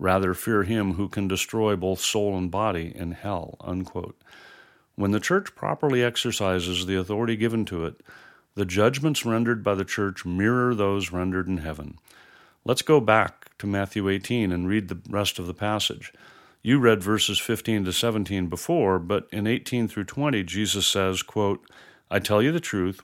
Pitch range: 95-115 Hz